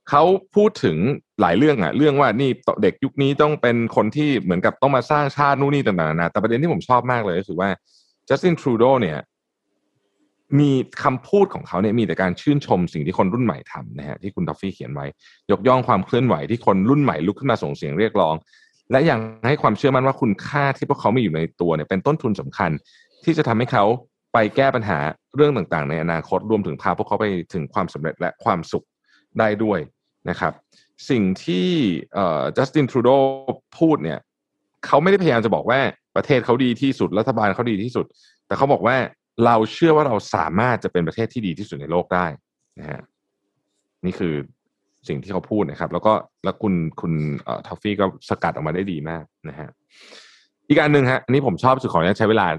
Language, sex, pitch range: Thai, male, 90-140 Hz